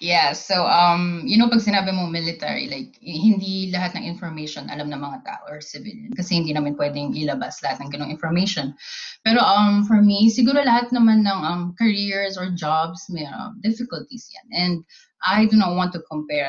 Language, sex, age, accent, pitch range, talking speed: Filipino, female, 20-39, native, 170-230 Hz, 185 wpm